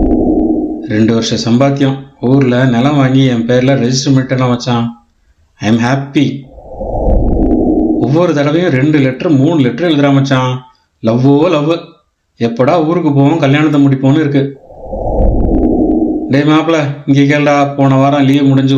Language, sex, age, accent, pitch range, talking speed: Tamil, male, 30-49, native, 120-145 Hz, 100 wpm